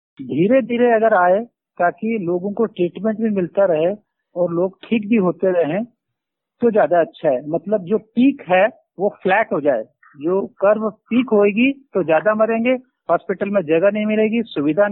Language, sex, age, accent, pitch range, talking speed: Hindi, male, 50-69, native, 195-240 Hz, 170 wpm